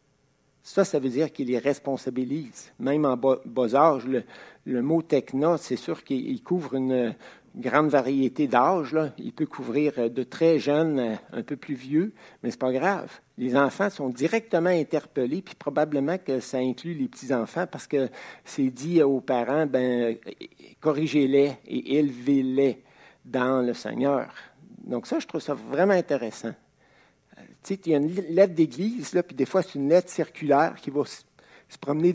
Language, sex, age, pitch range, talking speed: French, male, 60-79, 130-165 Hz, 170 wpm